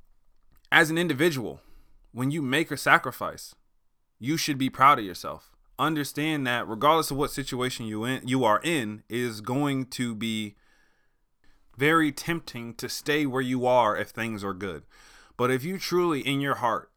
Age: 20-39